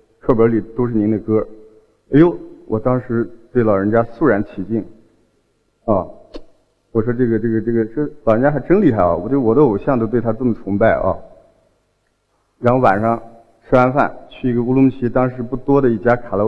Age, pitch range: 50-69, 110-130 Hz